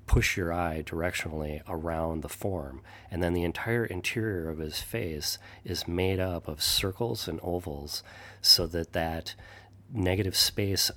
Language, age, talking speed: English, 40-59, 150 wpm